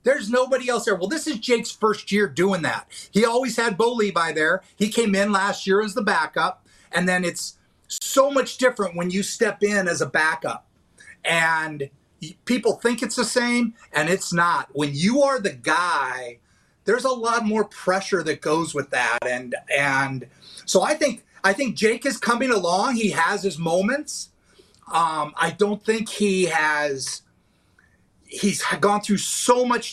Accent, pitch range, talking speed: American, 165-225 Hz, 175 wpm